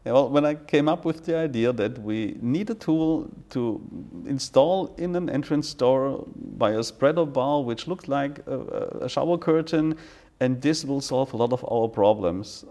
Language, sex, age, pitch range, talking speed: Dutch, male, 50-69, 115-150 Hz, 190 wpm